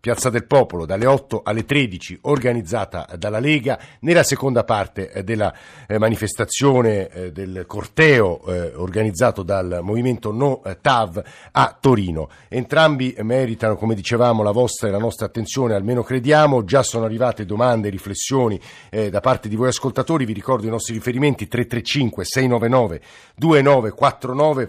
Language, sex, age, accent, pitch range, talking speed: Italian, male, 50-69, native, 110-135 Hz, 130 wpm